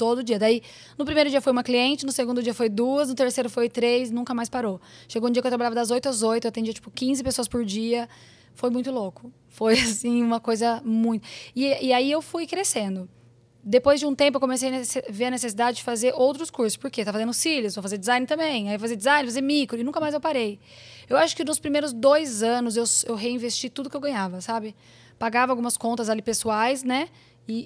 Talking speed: 230 wpm